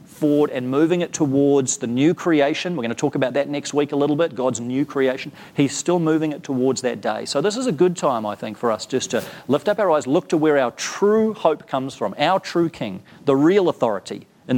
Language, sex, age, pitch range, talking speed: English, male, 40-59, 130-165 Hz, 245 wpm